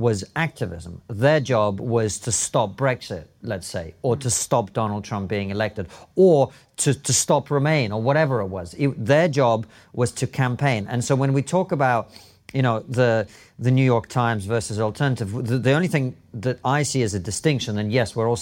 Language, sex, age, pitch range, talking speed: English, male, 40-59, 105-140 Hz, 200 wpm